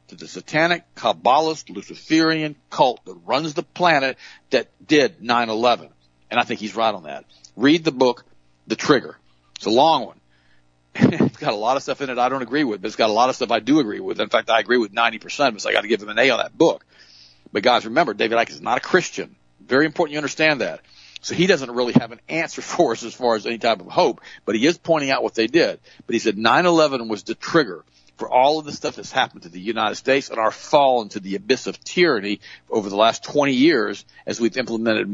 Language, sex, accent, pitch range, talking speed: English, male, American, 105-135 Hz, 240 wpm